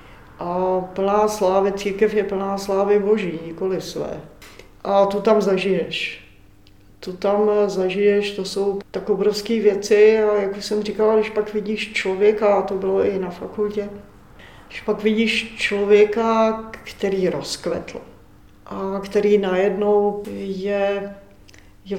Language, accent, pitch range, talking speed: Czech, native, 185-210 Hz, 130 wpm